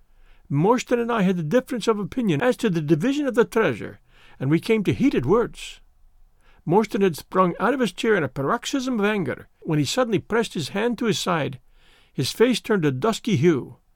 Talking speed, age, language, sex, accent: 205 wpm, 60-79, English, male, American